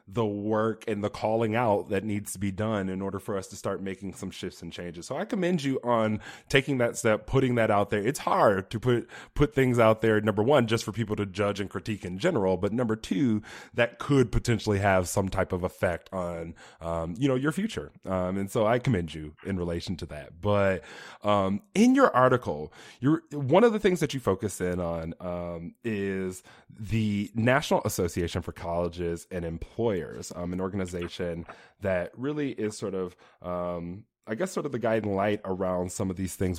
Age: 20-39